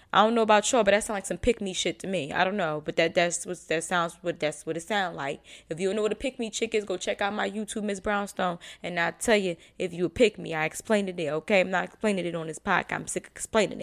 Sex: female